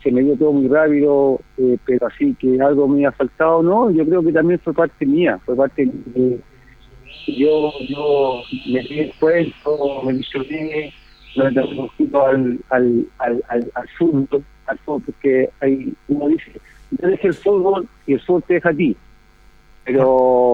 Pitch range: 130-155 Hz